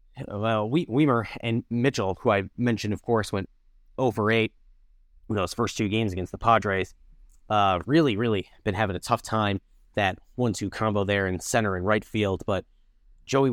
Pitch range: 95-115 Hz